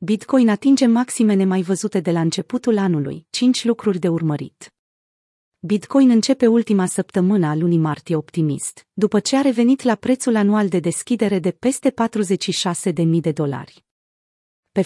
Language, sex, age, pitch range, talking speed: Romanian, female, 30-49, 180-230 Hz, 145 wpm